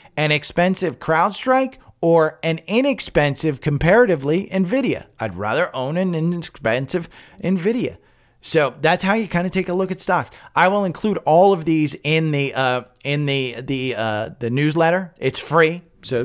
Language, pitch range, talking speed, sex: English, 140-205 Hz, 160 wpm, male